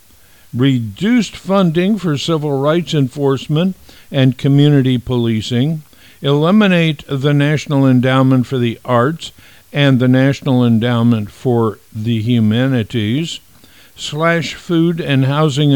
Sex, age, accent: male, 50-69, American